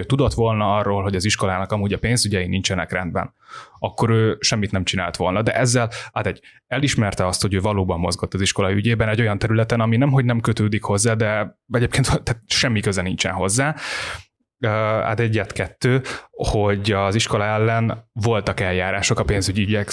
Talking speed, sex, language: 165 wpm, male, Hungarian